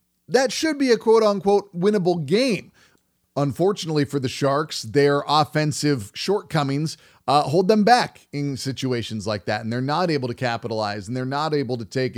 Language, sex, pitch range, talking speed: English, male, 135-160 Hz, 170 wpm